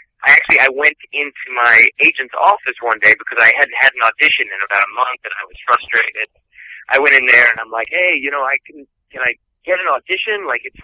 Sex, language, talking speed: male, English, 240 wpm